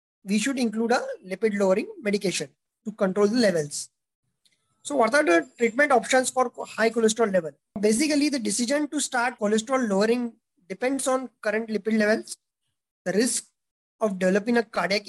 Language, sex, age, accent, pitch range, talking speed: English, male, 20-39, Indian, 195-240 Hz, 155 wpm